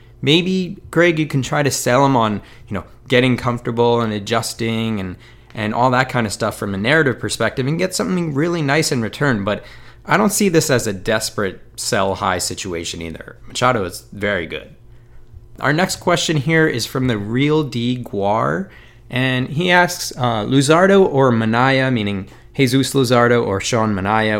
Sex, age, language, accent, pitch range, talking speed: male, 20-39, English, American, 105-145 Hz, 175 wpm